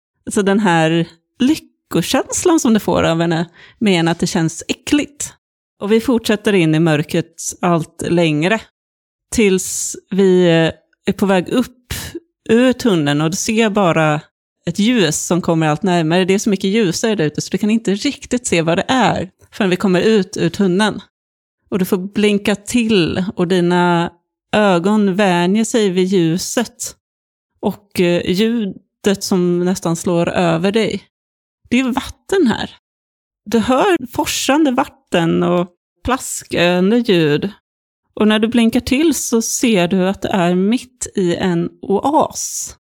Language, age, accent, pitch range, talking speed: Swedish, 30-49, native, 175-225 Hz, 150 wpm